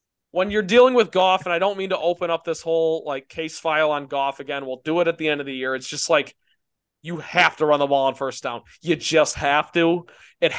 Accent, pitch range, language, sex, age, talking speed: American, 160-195 Hz, English, male, 20-39, 260 wpm